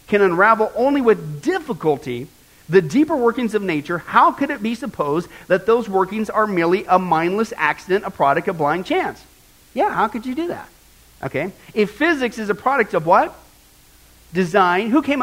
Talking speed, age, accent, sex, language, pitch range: 175 wpm, 40-59, American, male, English, 140-215 Hz